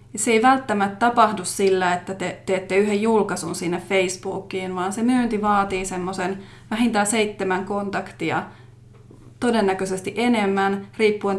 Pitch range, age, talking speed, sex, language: 185-215 Hz, 30-49, 120 wpm, female, Finnish